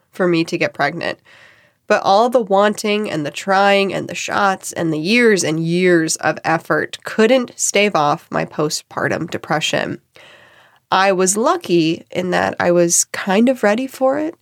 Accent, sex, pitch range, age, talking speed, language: American, female, 165-205 Hz, 20-39, 165 wpm, English